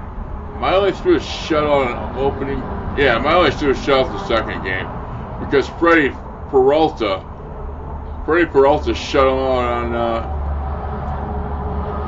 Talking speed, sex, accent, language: 120 wpm, male, American, English